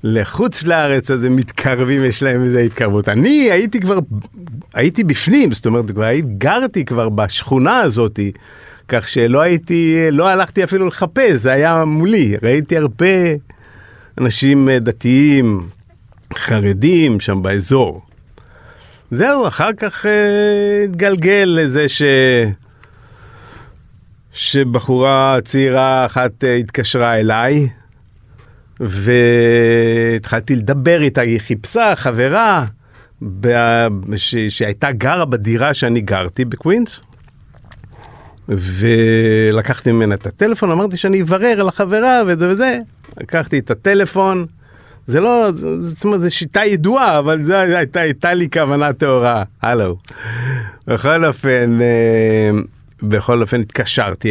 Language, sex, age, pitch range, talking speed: Hebrew, male, 50-69, 115-165 Hz, 105 wpm